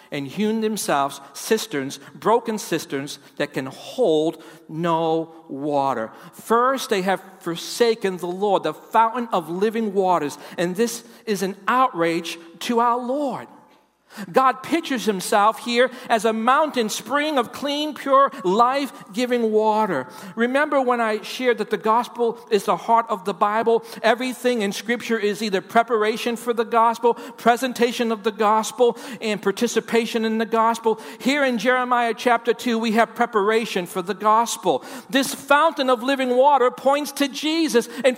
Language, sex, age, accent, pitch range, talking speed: English, male, 50-69, American, 200-250 Hz, 150 wpm